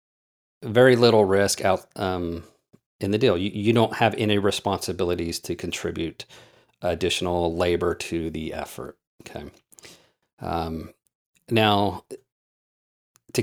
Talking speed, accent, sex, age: 110 wpm, American, male, 40-59